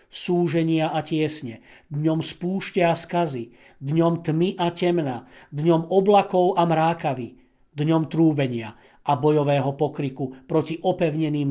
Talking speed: 115 wpm